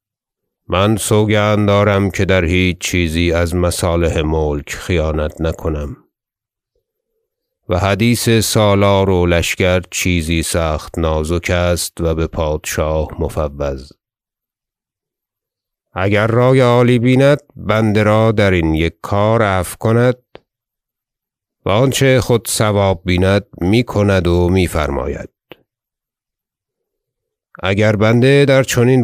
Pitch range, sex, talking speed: 85-115 Hz, male, 105 wpm